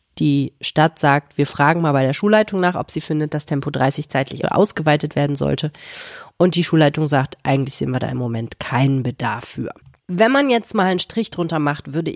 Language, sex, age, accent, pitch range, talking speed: German, female, 30-49, German, 145-180 Hz, 205 wpm